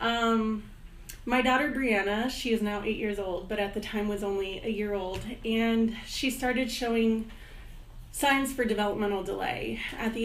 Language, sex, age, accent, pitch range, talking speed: English, female, 30-49, American, 205-230 Hz, 170 wpm